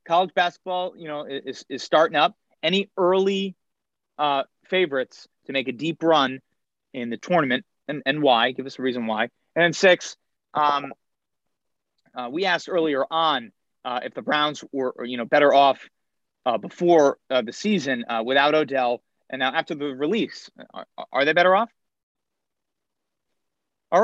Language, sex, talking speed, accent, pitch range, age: English, male, 160 wpm, American, 135-175 Hz, 30-49